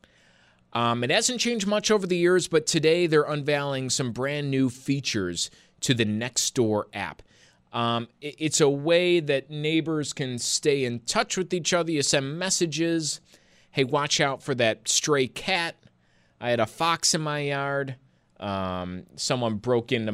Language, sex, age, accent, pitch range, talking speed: English, male, 30-49, American, 110-150 Hz, 160 wpm